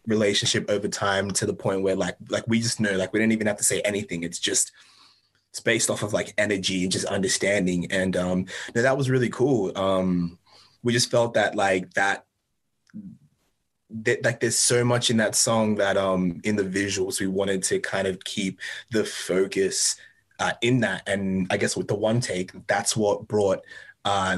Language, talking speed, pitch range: English, 195 wpm, 95-120 Hz